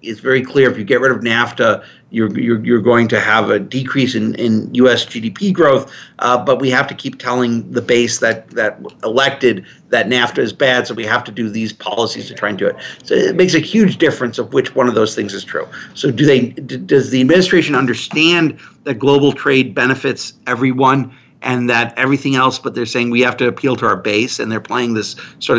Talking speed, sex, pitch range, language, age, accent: 225 wpm, male, 120-140 Hz, English, 50-69, American